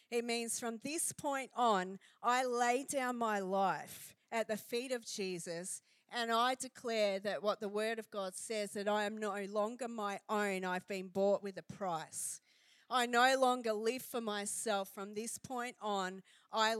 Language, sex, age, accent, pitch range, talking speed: English, female, 40-59, Australian, 195-235 Hz, 180 wpm